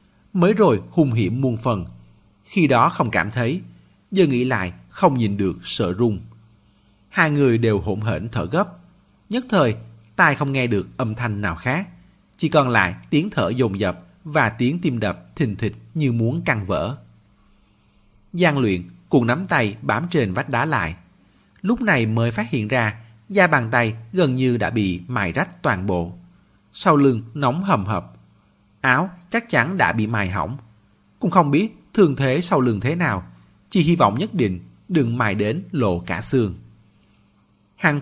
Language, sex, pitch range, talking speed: Vietnamese, male, 105-145 Hz, 180 wpm